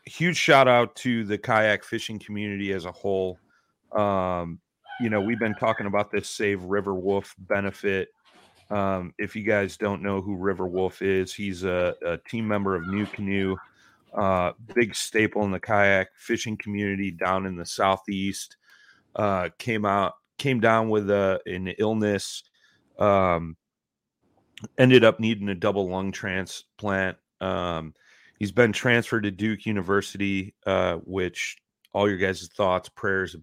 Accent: American